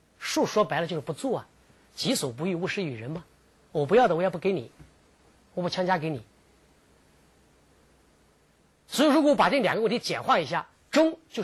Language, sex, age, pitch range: Chinese, male, 40-59, 140-235 Hz